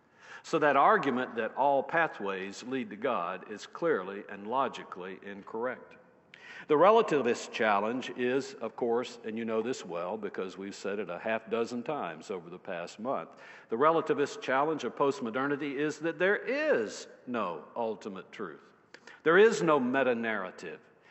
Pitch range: 120-155 Hz